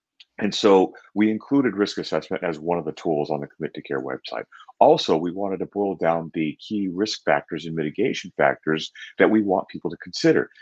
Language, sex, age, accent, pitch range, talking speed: English, male, 40-59, American, 85-120 Hz, 205 wpm